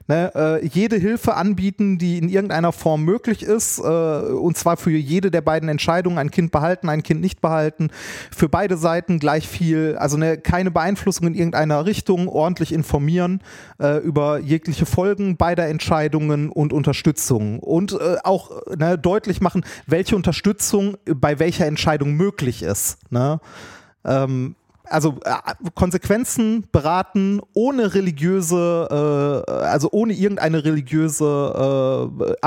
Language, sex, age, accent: German, male, 30-49, German